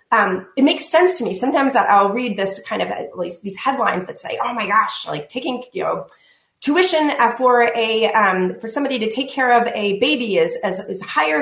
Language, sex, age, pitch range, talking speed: English, female, 30-49, 210-275 Hz, 215 wpm